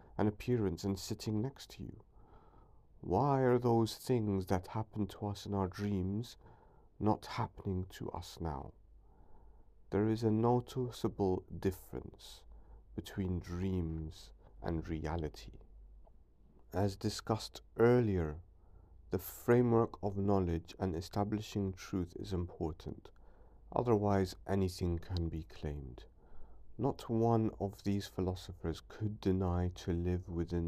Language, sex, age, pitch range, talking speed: English, male, 50-69, 85-105 Hz, 115 wpm